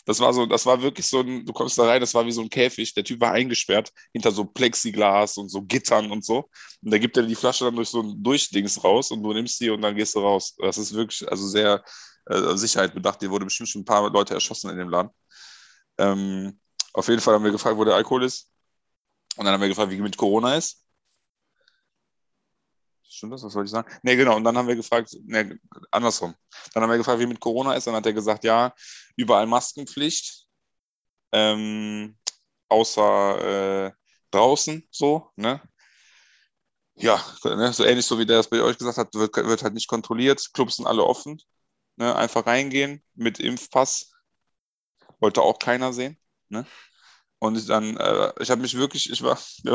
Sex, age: male, 20-39